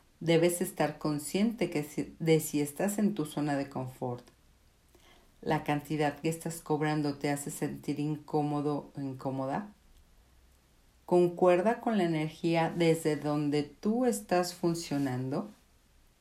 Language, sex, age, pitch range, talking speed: Spanish, female, 50-69, 150-210 Hz, 120 wpm